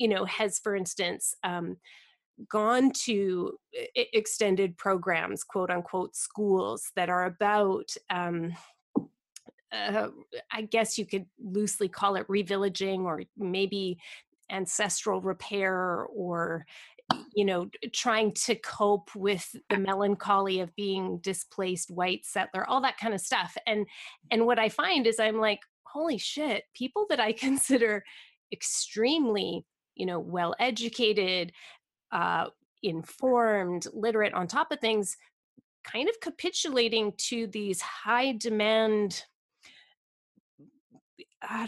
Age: 30-49